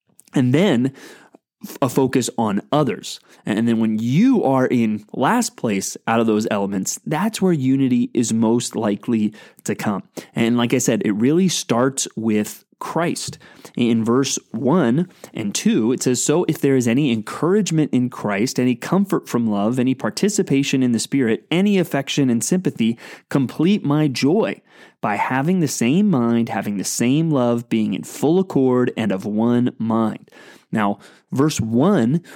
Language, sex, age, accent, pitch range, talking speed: English, male, 30-49, American, 115-150 Hz, 160 wpm